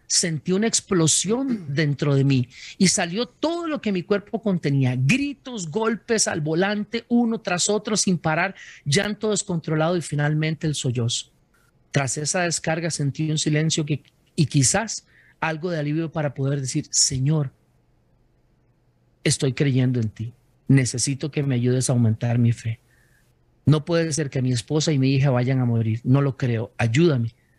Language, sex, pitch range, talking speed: Spanish, male, 130-165 Hz, 155 wpm